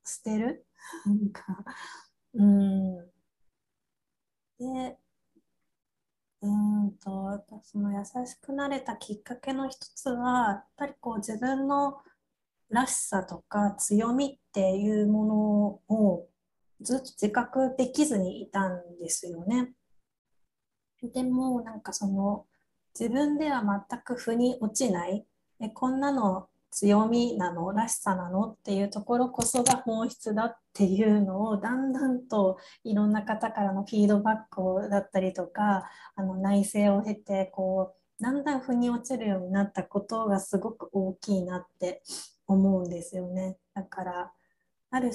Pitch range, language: 195-245 Hz, Japanese